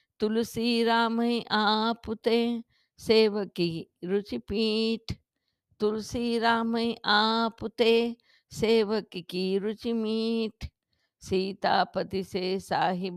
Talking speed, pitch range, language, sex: 90 wpm, 180-220 Hz, Hindi, female